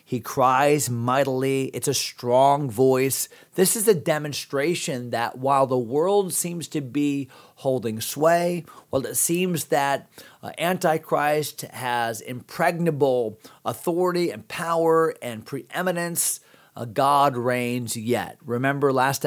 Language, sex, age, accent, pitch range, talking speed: English, male, 40-59, American, 125-155 Hz, 120 wpm